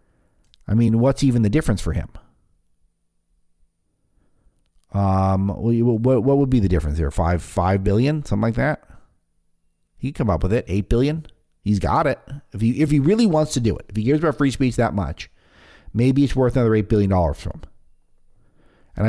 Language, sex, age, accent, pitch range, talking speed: English, male, 50-69, American, 85-115 Hz, 180 wpm